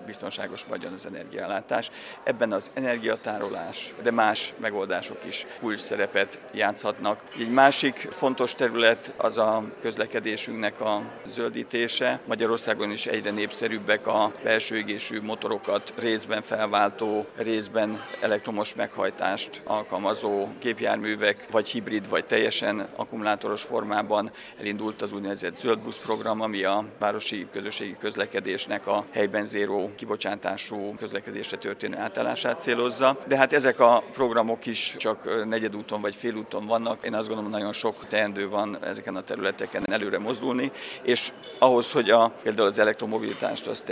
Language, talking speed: Hungarian, 130 wpm